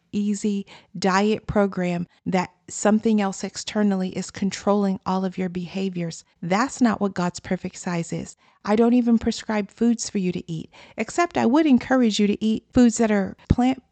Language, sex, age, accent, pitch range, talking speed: English, female, 40-59, American, 185-215 Hz, 175 wpm